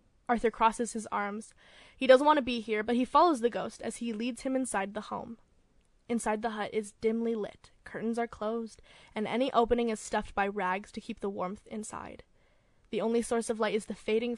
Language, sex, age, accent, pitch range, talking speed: English, female, 10-29, American, 210-240 Hz, 215 wpm